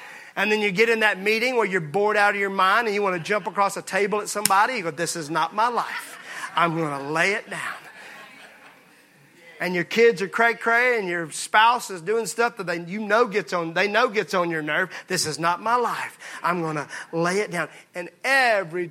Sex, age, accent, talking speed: male, 40-59, American, 220 wpm